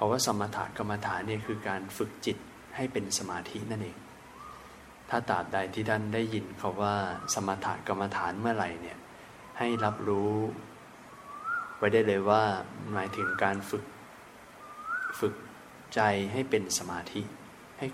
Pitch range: 100-115 Hz